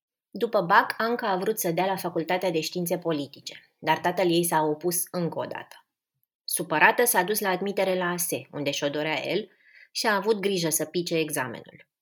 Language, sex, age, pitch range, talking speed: Romanian, female, 20-39, 160-210 Hz, 185 wpm